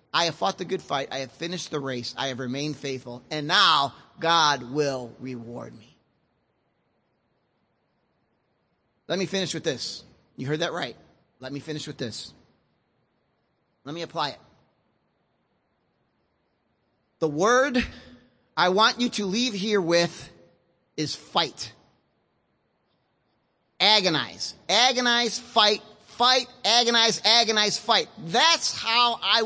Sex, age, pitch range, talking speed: male, 30-49, 165-280 Hz, 120 wpm